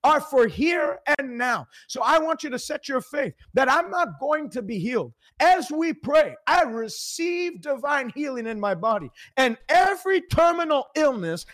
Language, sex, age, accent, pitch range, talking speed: English, male, 50-69, American, 245-315 Hz, 175 wpm